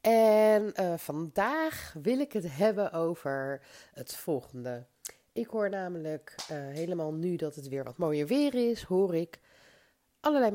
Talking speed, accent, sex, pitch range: 150 wpm, Dutch, female, 155-210 Hz